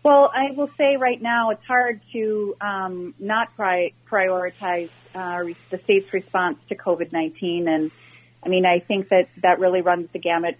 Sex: female